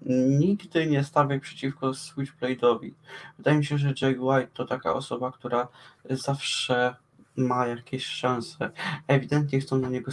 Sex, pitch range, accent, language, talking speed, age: male, 125-145 Hz, native, Polish, 135 wpm, 20-39